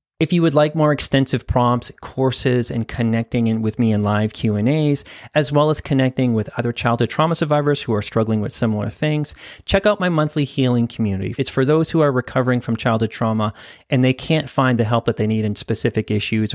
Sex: male